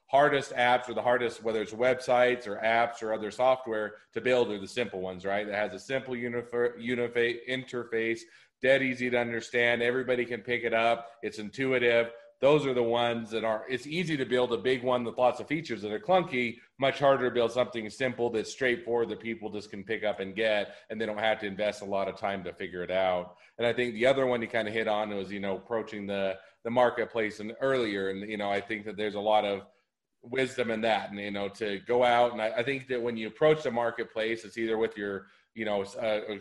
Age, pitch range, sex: 40-59, 105-125 Hz, male